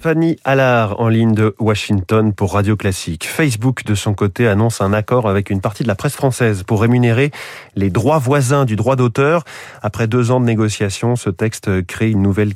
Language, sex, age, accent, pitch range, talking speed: French, male, 30-49, French, 105-130 Hz, 195 wpm